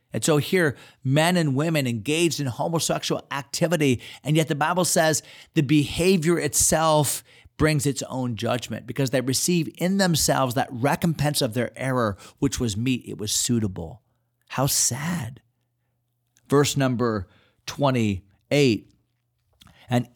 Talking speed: 130 wpm